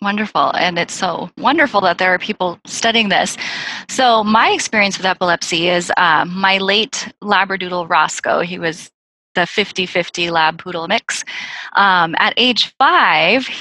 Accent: American